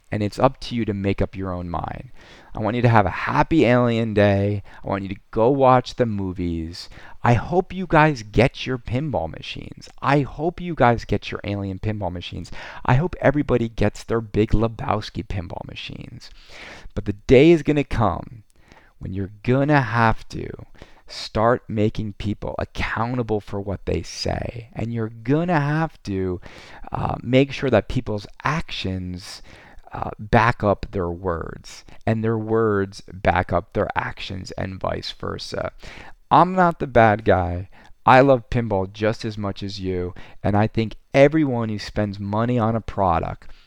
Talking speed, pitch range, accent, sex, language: 170 wpm, 100-130 Hz, American, male, English